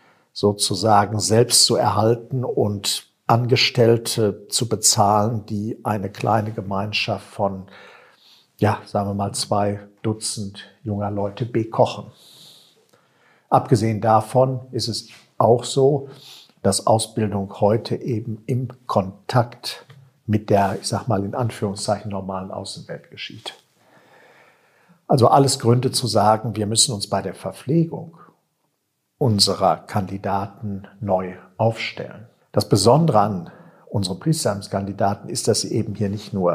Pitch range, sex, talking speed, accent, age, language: 100-120 Hz, male, 115 wpm, German, 60-79, German